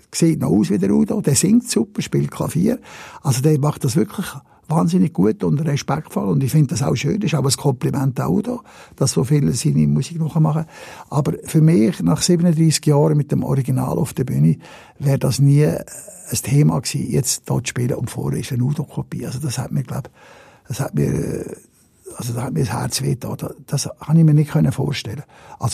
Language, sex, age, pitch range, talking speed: German, male, 60-79, 135-165 Hz, 210 wpm